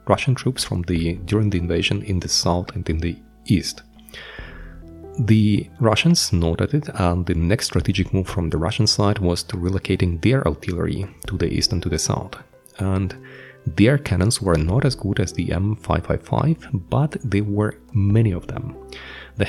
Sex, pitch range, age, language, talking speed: male, 85-115 Hz, 30-49, English, 170 wpm